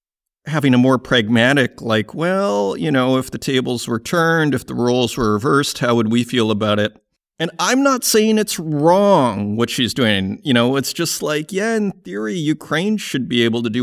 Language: English